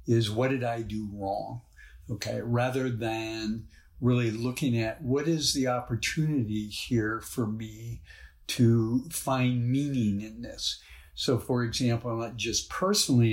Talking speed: 135 wpm